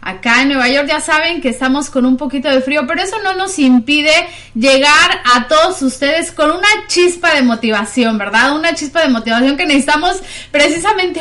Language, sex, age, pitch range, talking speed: Spanish, female, 30-49, 240-305 Hz, 185 wpm